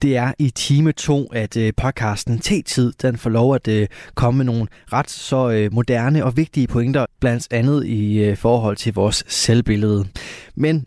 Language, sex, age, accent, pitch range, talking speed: Danish, male, 20-39, native, 110-130 Hz, 160 wpm